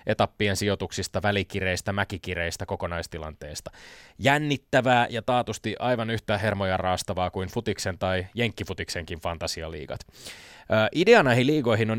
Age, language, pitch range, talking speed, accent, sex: 20-39, Finnish, 95-115 Hz, 110 wpm, native, male